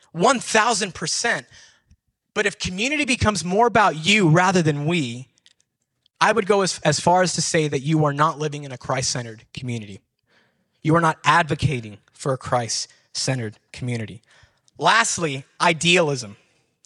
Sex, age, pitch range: male, 20-39, 150-205 Hz